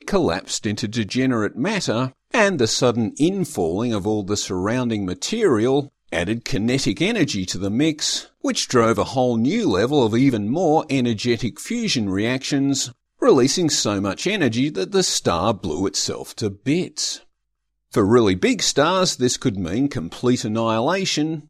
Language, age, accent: English, 50-69, Australian